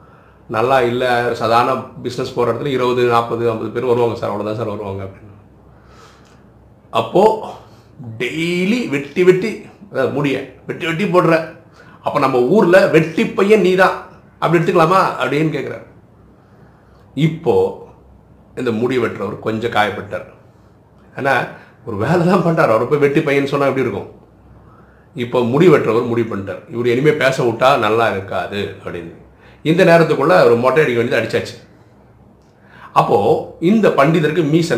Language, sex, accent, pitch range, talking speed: Tamil, male, native, 120-175 Hz, 125 wpm